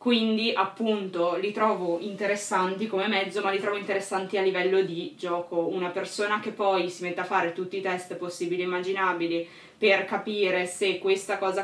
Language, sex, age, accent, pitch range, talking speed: Italian, female, 20-39, native, 180-210 Hz, 175 wpm